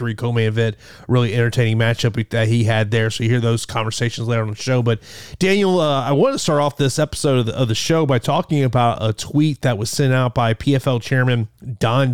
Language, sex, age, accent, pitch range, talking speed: English, male, 30-49, American, 120-170 Hz, 225 wpm